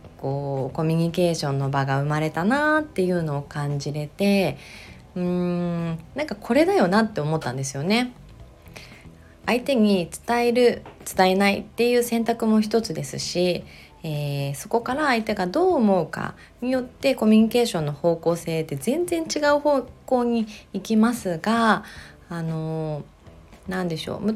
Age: 20-39